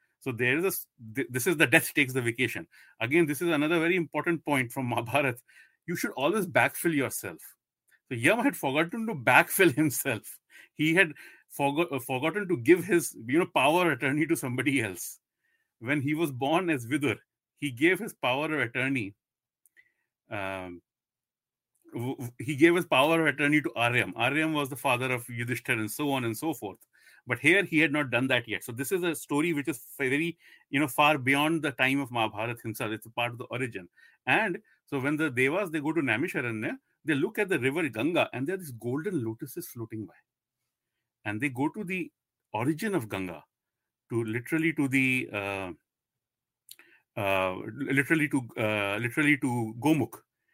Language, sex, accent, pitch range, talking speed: Hindi, male, native, 120-155 Hz, 185 wpm